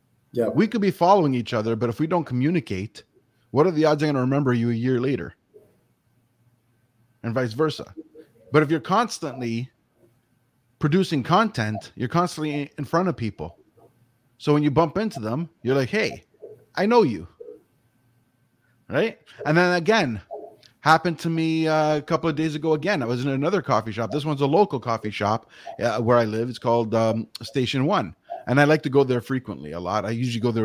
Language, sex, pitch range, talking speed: English, male, 115-150 Hz, 190 wpm